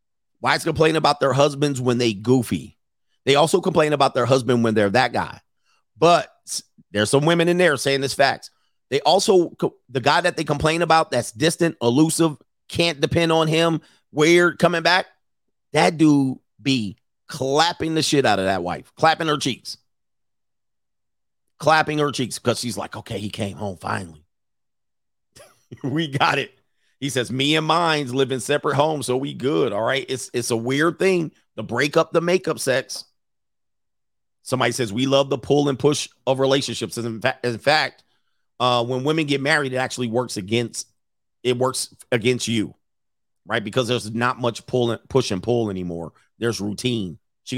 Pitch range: 115-150 Hz